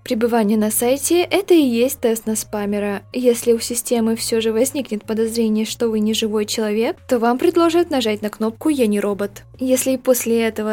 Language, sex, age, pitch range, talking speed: Russian, female, 20-39, 210-260 Hz, 190 wpm